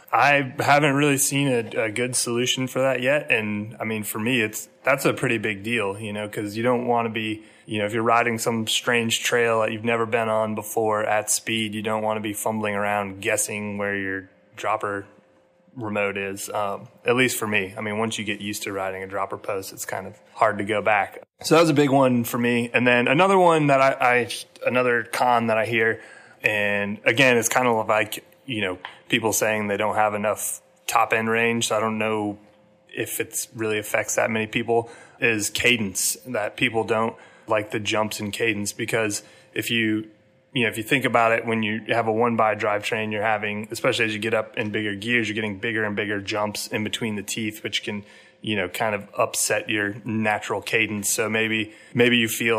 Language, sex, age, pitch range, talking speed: English, male, 30-49, 105-120 Hz, 220 wpm